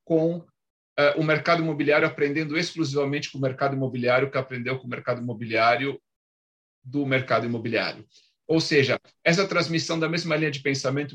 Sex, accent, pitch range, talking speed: male, Brazilian, 135-195 Hz, 150 wpm